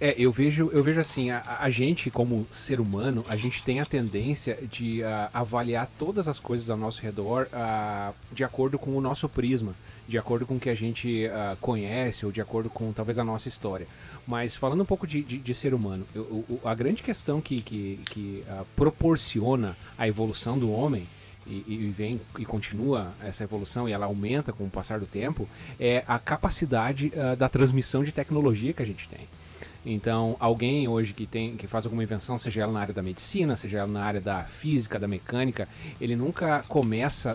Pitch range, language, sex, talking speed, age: 110-135 Hz, Portuguese, male, 185 wpm, 30-49